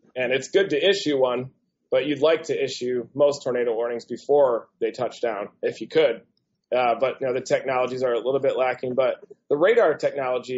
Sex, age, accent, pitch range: male, 20-39, American, 125-150 Hz